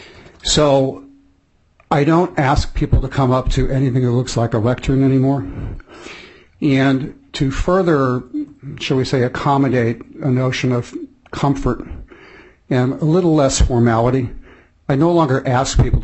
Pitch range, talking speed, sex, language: 115-135 Hz, 140 wpm, male, English